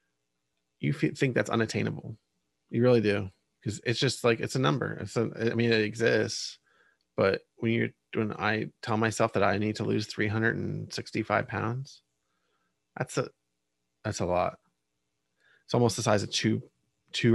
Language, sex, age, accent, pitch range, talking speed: English, male, 20-39, American, 95-125 Hz, 175 wpm